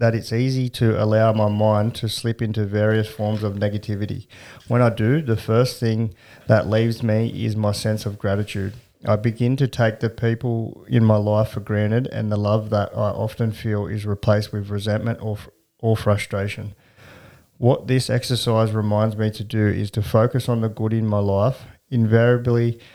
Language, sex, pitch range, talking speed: English, male, 105-120 Hz, 185 wpm